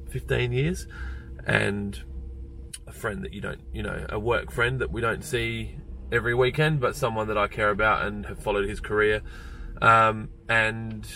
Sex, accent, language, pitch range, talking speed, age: male, Australian, English, 95-110 Hz, 170 wpm, 20-39